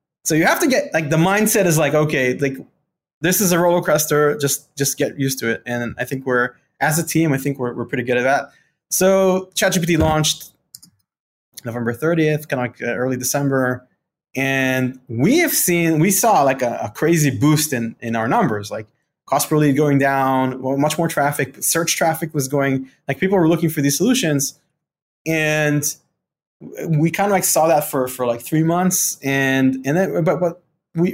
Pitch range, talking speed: 130-170 Hz, 195 wpm